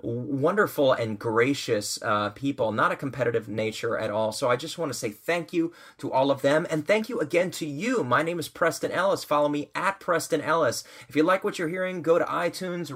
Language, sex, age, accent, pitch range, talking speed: English, male, 30-49, American, 120-160 Hz, 220 wpm